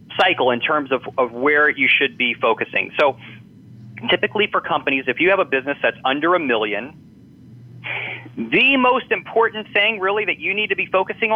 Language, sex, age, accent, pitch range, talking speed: English, male, 30-49, American, 125-180 Hz, 180 wpm